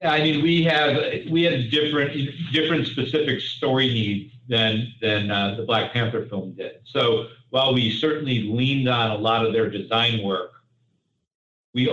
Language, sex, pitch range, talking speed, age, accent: English, male, 110-130 Hz, 160 wpm, 50-69, American